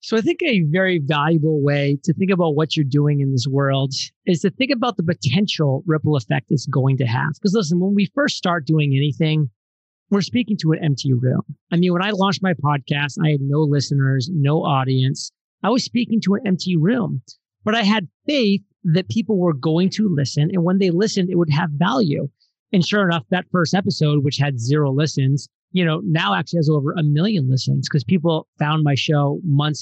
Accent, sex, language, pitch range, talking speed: American, male, English, 145-185 Hz, 210 wpm